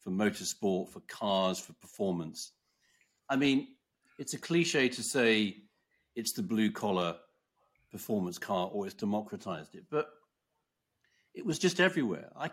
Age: 50-69